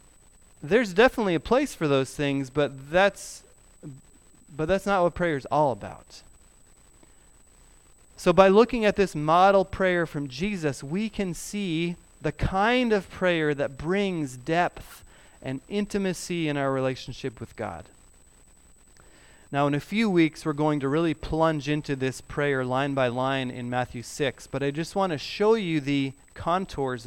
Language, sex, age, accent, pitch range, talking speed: English, male, 30-49, American, 135-185 Hz, 155 wpm